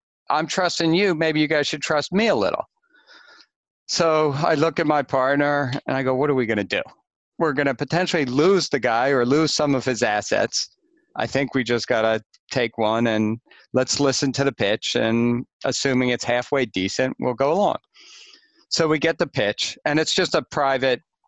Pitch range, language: 120-150 Hz, English